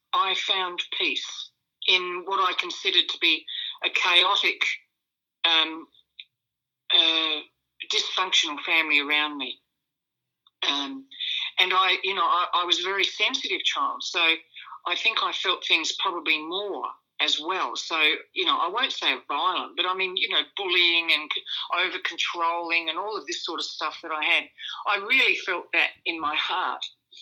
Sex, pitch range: female, 165-230 Hz